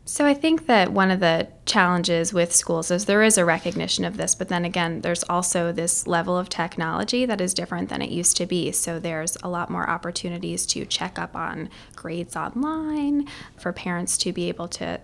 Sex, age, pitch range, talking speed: female, 20-39, 175-220 Hz, 210 wpm